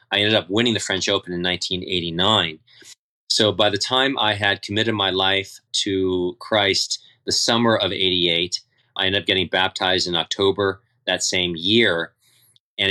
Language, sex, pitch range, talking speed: English, male, 90-110 Hz, 165 wpm